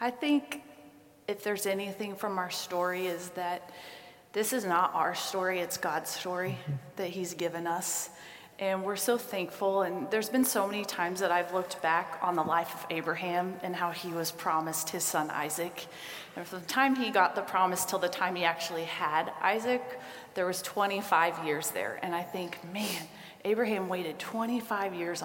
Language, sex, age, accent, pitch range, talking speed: English, female, 30-49, American, 170-195 Hz, 185 wpm